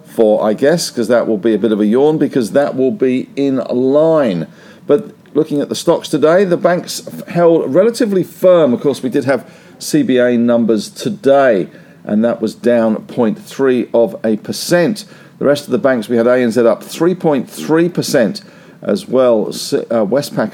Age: 50-69